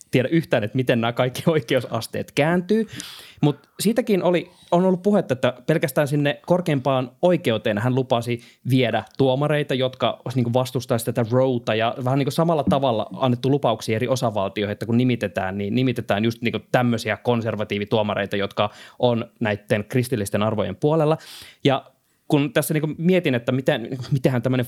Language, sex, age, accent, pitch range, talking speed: Finnish, male, 20-39, native, 115-140 Hz, 140 wpm